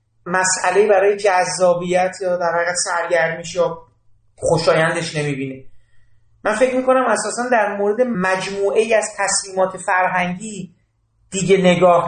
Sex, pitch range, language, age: male, 170-210 Hz, Persian, 40-59